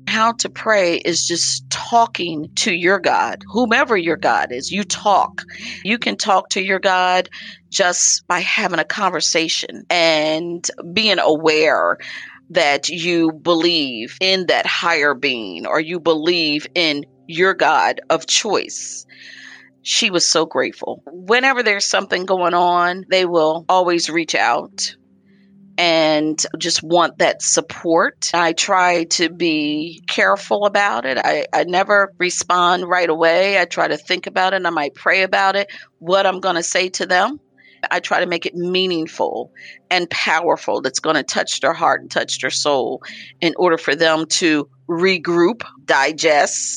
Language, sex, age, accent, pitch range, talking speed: English, female, 40-59, American, 160-195 Hz, 155 wpm